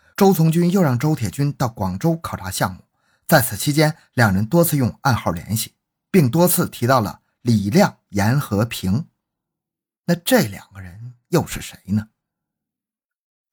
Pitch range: 110-165 Hz